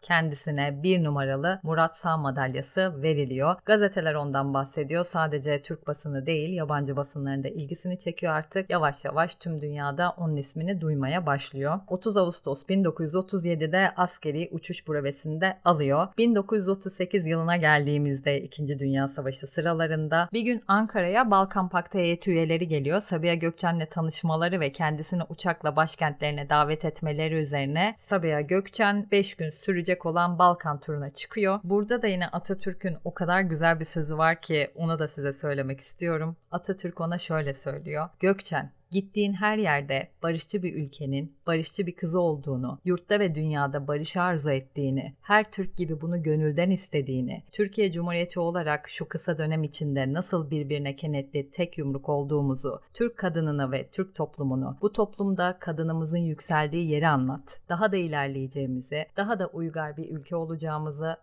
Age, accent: 30-49, native